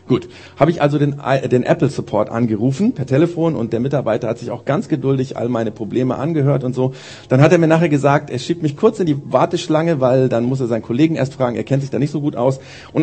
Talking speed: 250 wpm